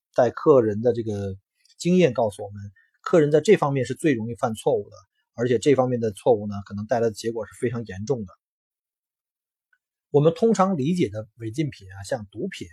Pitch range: 115-175 Hz